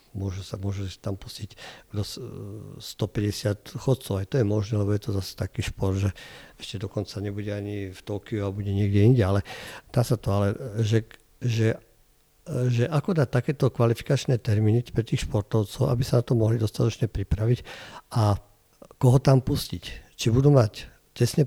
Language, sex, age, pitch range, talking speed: Slovak, male, 50-69, 105-130 Hz, 165 wpm